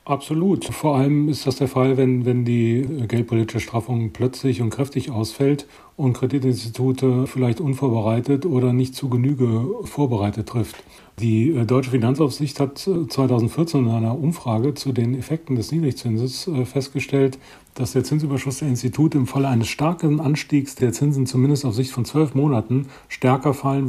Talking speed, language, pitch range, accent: 150 wpm, German, 115-135 Hz, German